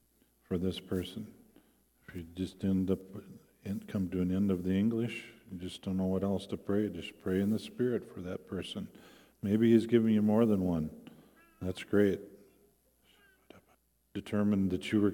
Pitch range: 90-115 Hz